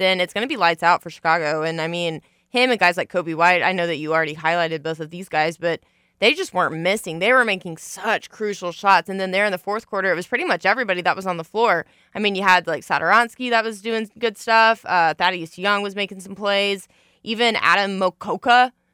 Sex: female